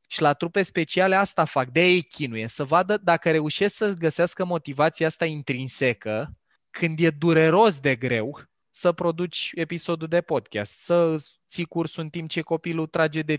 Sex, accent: male, native